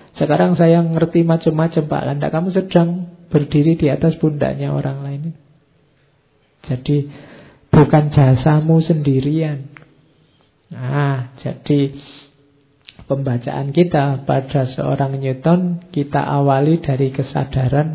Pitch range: 135-160 Hz